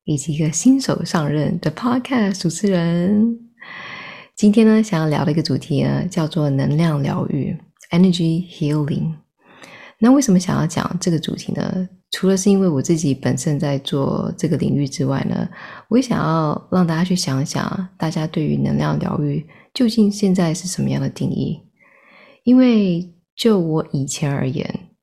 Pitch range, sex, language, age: 155-205 Hz, female, Chinese, 20-39